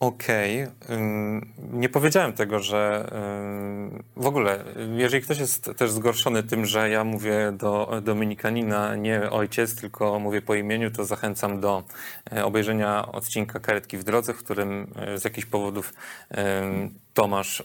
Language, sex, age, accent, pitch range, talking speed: English, male, 30-49, Polish, 105-120 Hz, 130 wpm